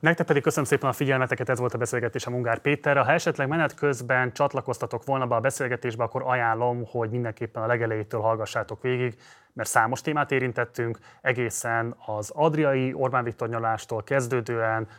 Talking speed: 150 wpm